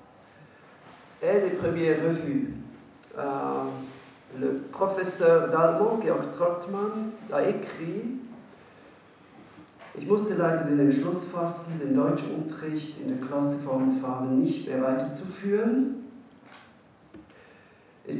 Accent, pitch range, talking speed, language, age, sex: German, 150-190 Hz, 105 wpm, English, 40-59, male